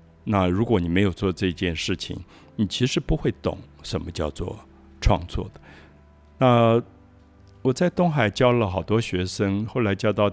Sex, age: male, 60-79